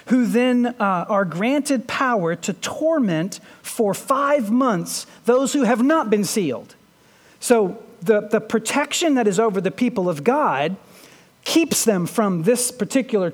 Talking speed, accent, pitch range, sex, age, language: 150 wpm, American, 195-265 Hz, male, 40-59, English